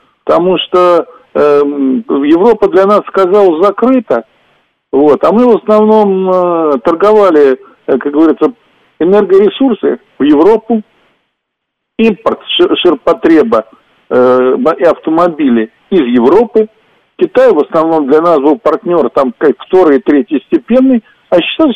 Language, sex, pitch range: Russian, male, 170-280 Hz